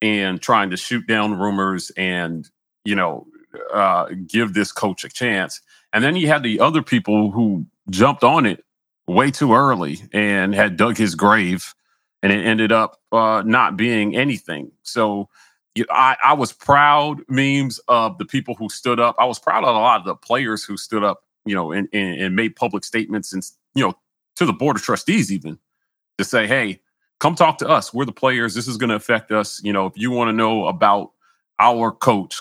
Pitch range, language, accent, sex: 95-115 Hz, English, American, male